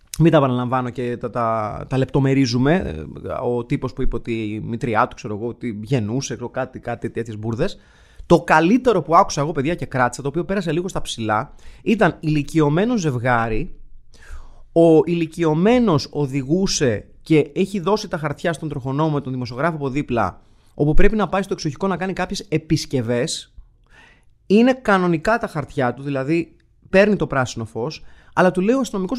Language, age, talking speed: Greek, 30-49, 165 wpm